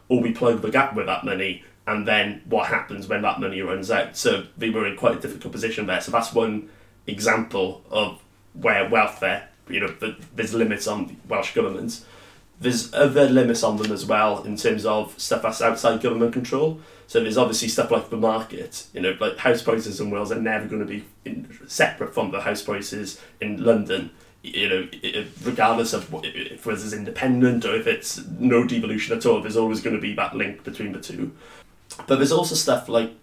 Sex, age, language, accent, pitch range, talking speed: male, 30-49, English, British, 105-120 Hz, 200 wpm